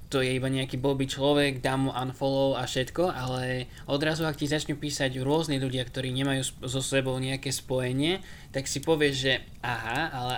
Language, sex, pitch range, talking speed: Slovak, male, 130-145 Hz, 180 wpm